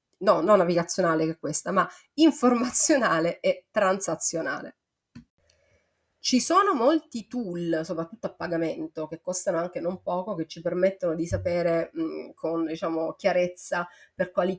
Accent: native